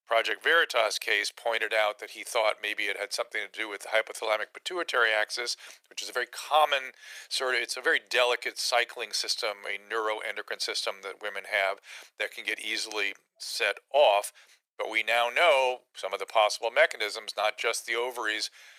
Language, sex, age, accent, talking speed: English, male, 40-59, American, 180 wpm